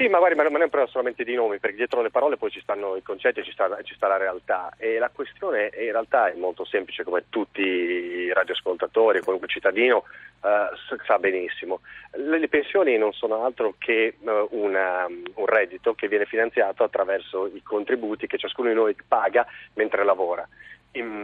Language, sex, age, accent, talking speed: Italian, male, 40-59, native, 195 wpm